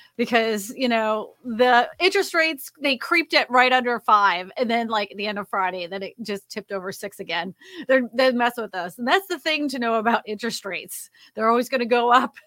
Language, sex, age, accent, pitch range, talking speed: English, female, 30-49, American, 215-295 Hz, 220 wpm